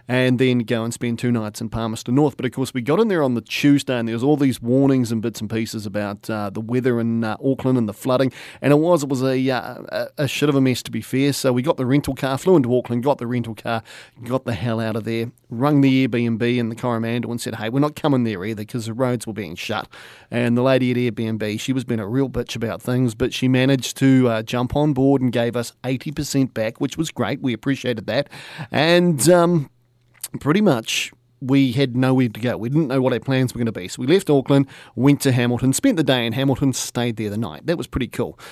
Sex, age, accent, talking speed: male, 30-49, Australian, 255 wpm